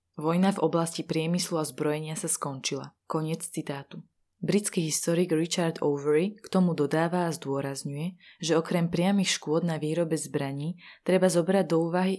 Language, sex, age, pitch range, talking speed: Slovak, female, 20-39, 155-180 Hz, 150 wpm